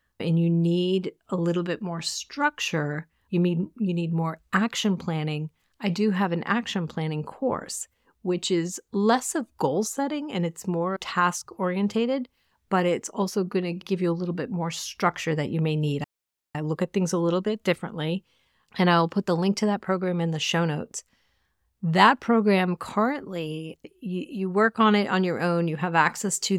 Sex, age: female, 40-59